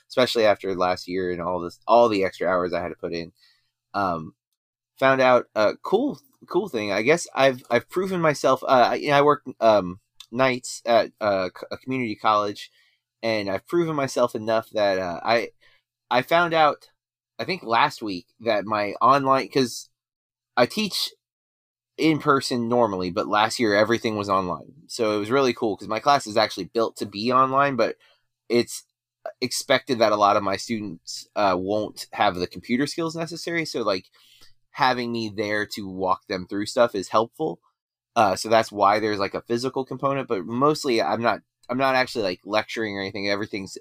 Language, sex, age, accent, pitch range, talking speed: English, male, 30-49, American, 100-130 Hz, 185 wpm